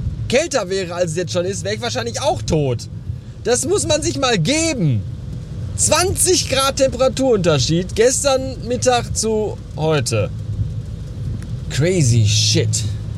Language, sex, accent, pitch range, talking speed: German, male, German, 115-170 Hz, 125 wpm